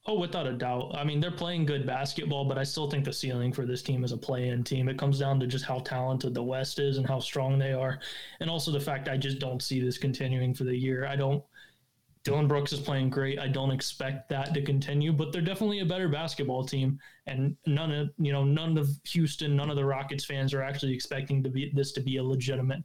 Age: 20-39